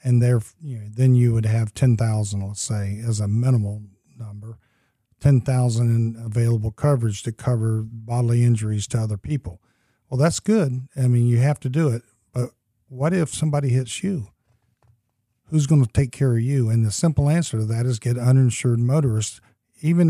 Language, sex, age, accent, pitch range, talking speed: English, male, 50-69, American, 115-140 Hz, 180 wpm